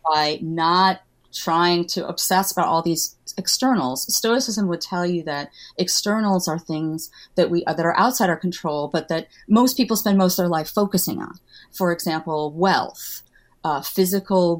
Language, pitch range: English, 155-195 Hz